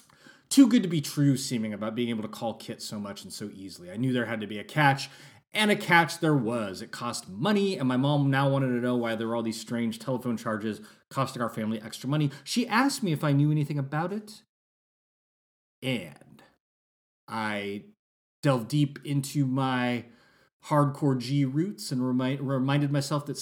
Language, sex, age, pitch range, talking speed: English, male, 30-49, 115-150 Hz, 190 wpm